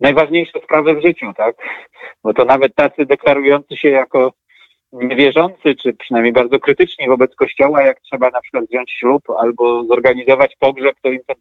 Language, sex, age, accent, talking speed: Polish, male, 40-59, native, 165 wpm